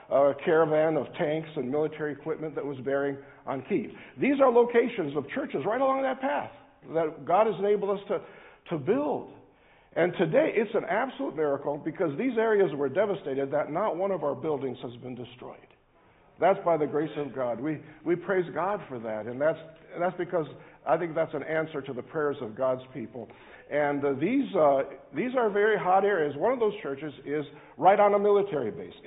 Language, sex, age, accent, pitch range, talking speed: English, male, 50-69, American, 140-190 Hz, 195 wpm